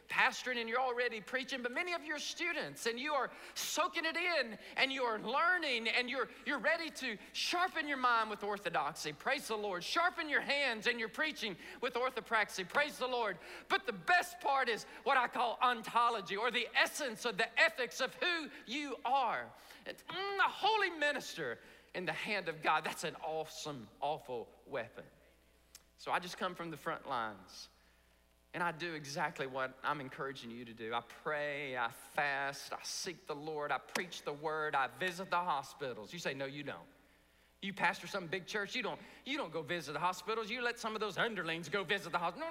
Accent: American